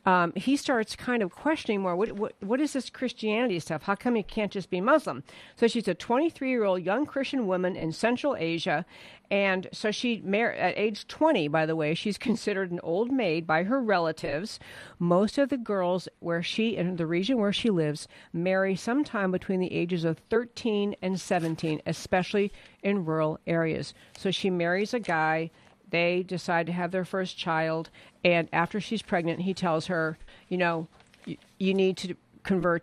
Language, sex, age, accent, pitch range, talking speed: English, female, 50-69, American, 165-210 Hz, 180 wpm